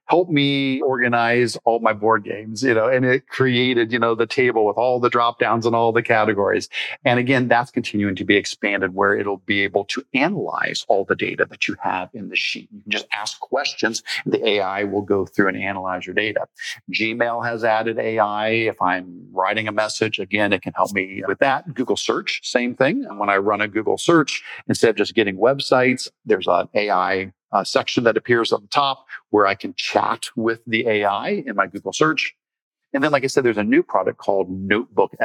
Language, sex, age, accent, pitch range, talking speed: English, male, 50-69, American, 100-125 Hz, 215 wpm